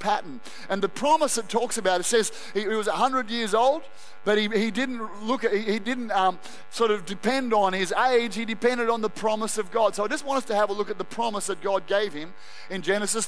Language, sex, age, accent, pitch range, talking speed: English, male, 30-49, Australian, 190-230 Hz, 250 wpm